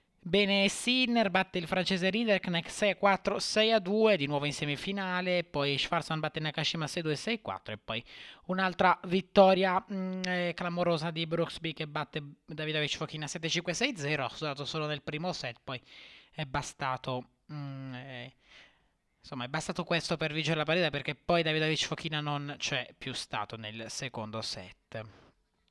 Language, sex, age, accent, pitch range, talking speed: Italian, male, 20-39, native, 145-180 Hz, 140 wpm